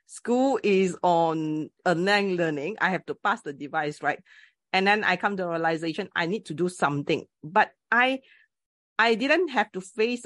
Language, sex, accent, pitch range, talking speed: English, female, Malaysian, 165-225 Hz, 180 wpm